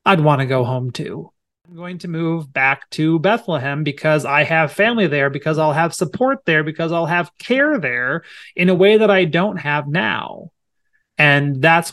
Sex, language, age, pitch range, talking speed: male, English, 30-49, 150-195 Hz, 190 wpm